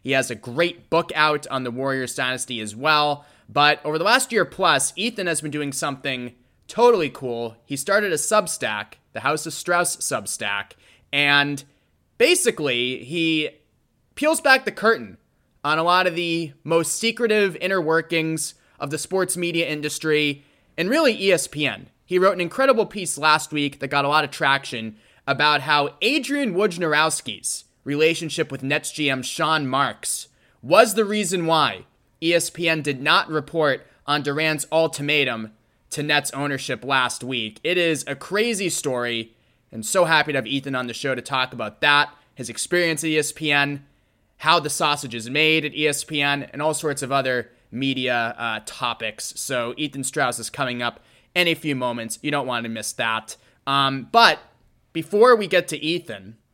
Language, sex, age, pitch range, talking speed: English, male, 20-39, 130-165 Hz, 165 wpm